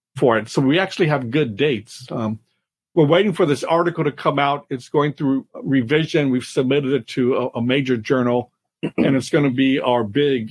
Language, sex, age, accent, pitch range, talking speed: English, male, 50-69, American, 125-160 Hz, 200 wpm